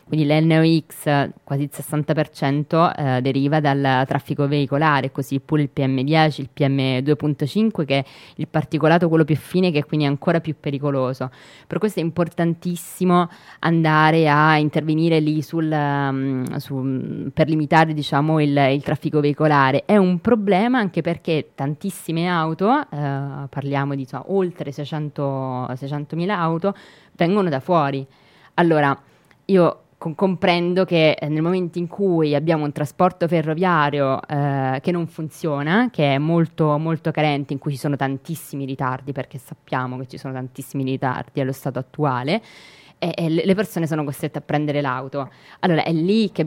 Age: 20-39